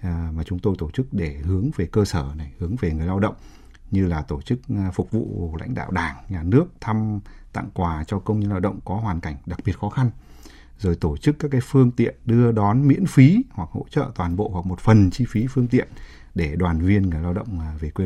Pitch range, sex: 85-110 Hz, male